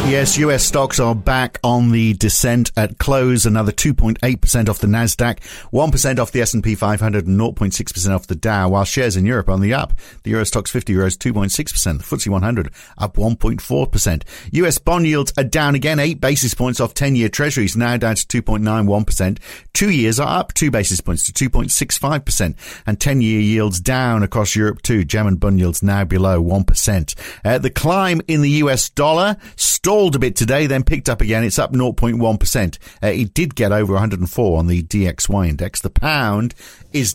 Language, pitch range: English, 100-130 Hz